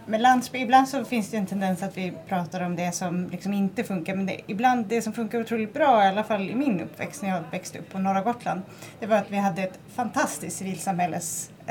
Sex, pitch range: female, 185-230 Hz